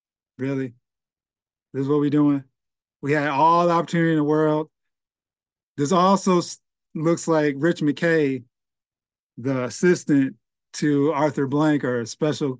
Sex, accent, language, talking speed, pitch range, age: male, American, English, 135 wpm, 140-175 Hz, 50-69